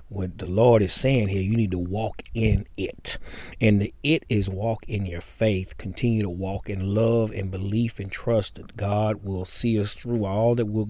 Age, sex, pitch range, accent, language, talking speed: 40-59, male, 95-120 Hz, American, English, 210 wpm